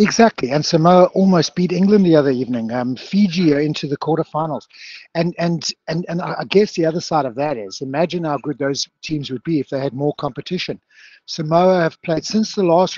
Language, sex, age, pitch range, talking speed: English, male, 60-79, 135-165 Hz, 205 wpm